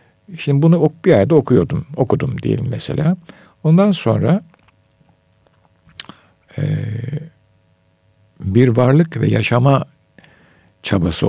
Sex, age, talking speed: male, 60-79, 85 wpm